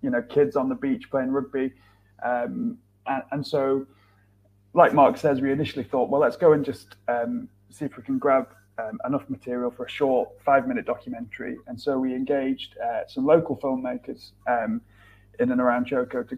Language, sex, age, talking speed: English, male, 30-49, 185 wpm